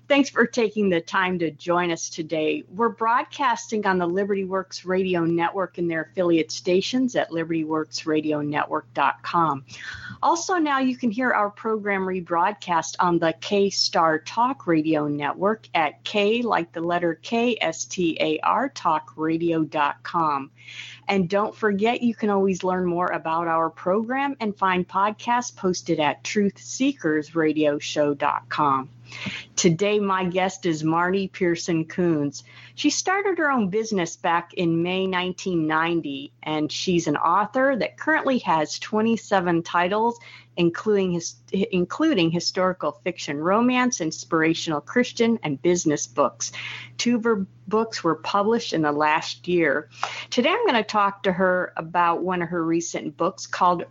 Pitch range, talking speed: 160-205 Hz, 135 wpm